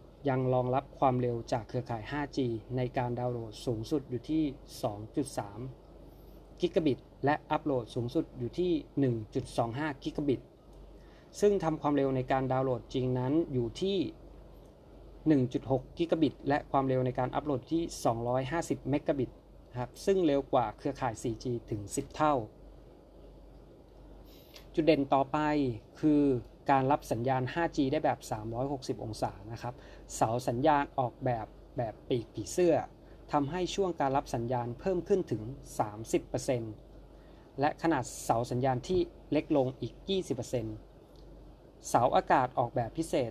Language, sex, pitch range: Thai, male, 120-150 Hz